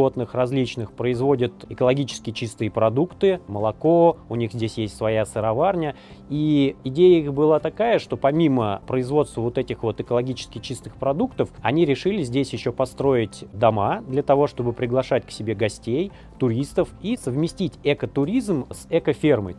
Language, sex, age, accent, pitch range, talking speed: Russian, male, 30-49, native, 110-140 Hz, 140 wpm